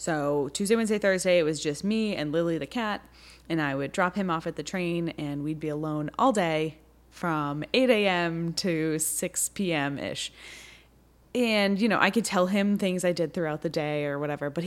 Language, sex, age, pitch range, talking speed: English, female, 20-39, 155-225 Hz, 205 wpm